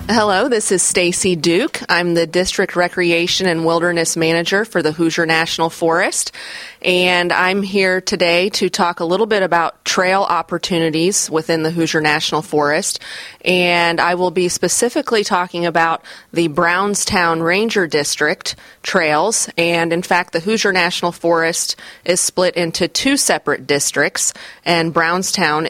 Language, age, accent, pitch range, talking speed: English, 30-49, American, 160-180 Hz, 140 wpm